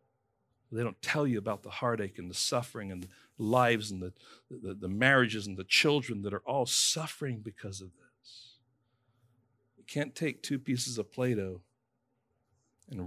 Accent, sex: American, male